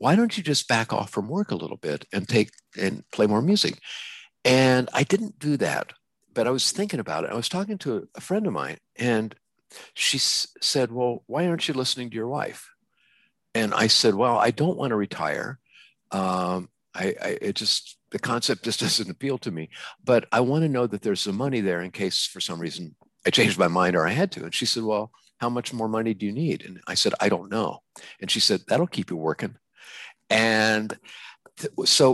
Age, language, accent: 50-69, English, American